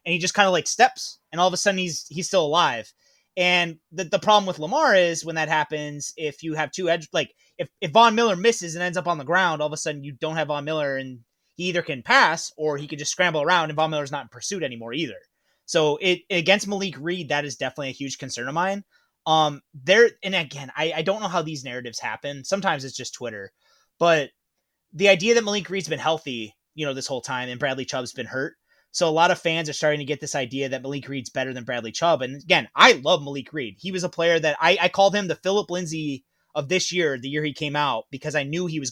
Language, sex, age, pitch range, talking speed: English, male, 20-39, 145-180 Hz, 255 wpm